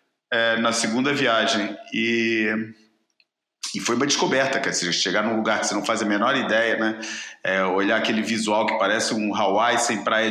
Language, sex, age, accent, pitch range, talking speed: Portuguese, male, 40-59, Brazilian, 115-140 Hz, 180 wpm